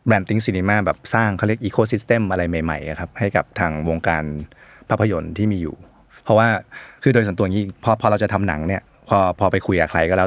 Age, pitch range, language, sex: 20-39, 85-110 Hz, Thai, male